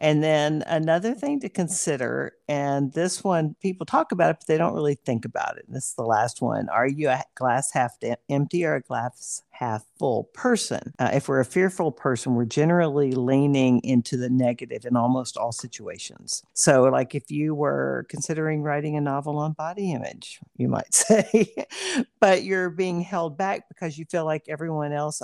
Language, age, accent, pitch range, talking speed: English, 50-69, American, 135-170 Hz, 190 wpm